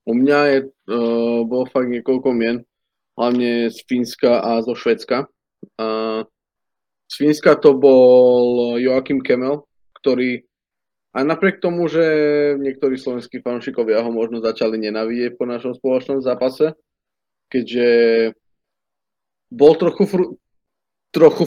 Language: Slovak